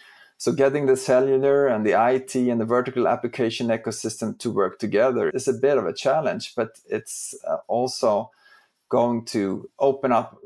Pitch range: 115-135 Hz